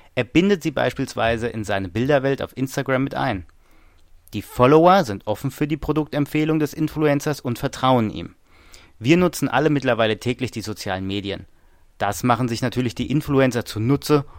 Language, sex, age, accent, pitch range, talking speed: German, male, 30-49, German, 100-135 Hz, 160 wpm